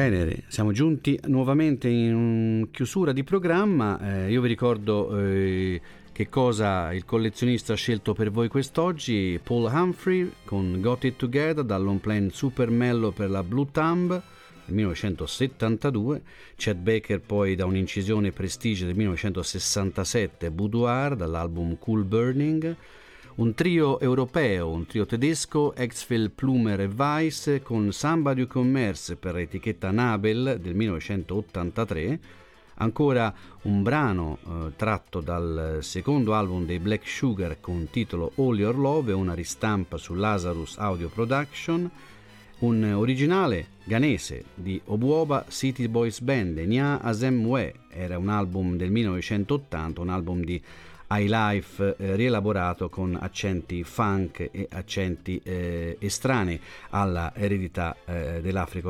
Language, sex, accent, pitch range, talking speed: Italian, male, native, 90-125 Hz, 125 wpm